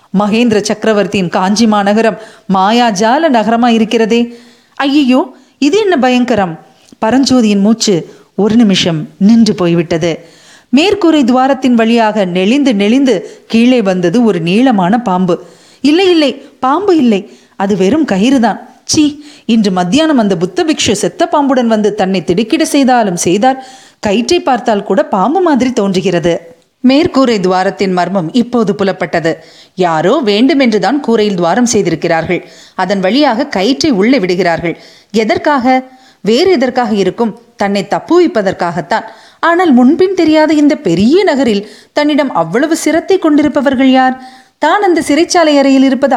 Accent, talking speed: native, 115 wpm